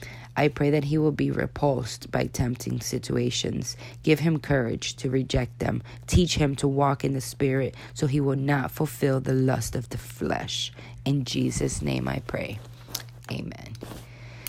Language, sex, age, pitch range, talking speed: English, female, 20-39, 120-145 Hz, 160 wpm